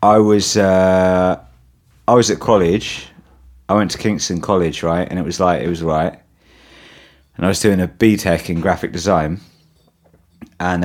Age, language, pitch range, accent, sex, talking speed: 30-49, English, 85-95 Hz, British, male, 165 wpm